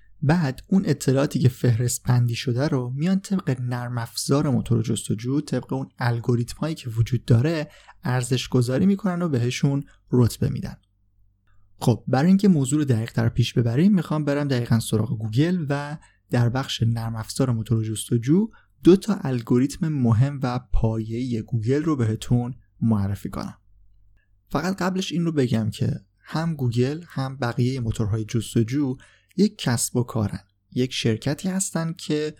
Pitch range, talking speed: 115-145 Hz, 145 wpm